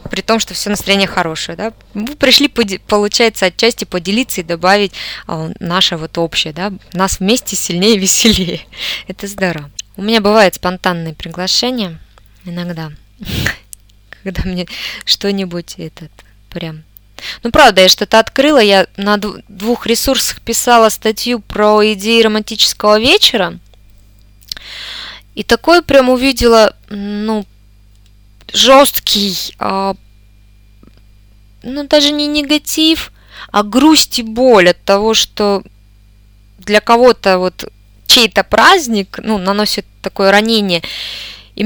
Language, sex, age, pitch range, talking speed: Russian, female, 20-39, 175-235 Hz, 115 wpm